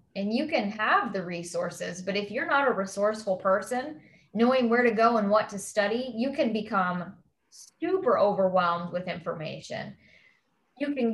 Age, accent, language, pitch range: 10-29, American, English, 200-255 Hz